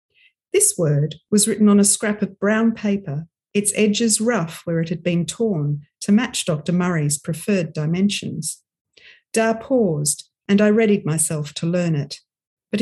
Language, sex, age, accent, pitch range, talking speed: English, female, 50-69, Australian, 160-225 Hz, 160 wpm